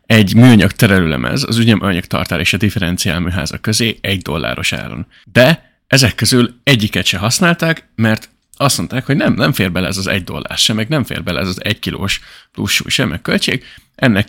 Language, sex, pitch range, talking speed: Hungarian, male, 90-115 Hz, 190 wpm